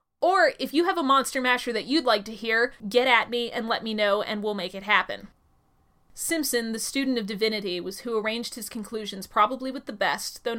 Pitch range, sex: 210-255 Hz, female